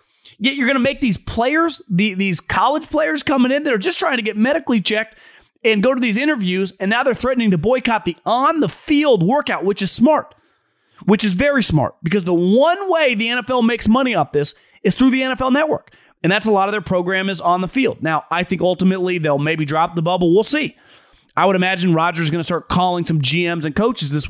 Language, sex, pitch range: English, male, 175-255 Hz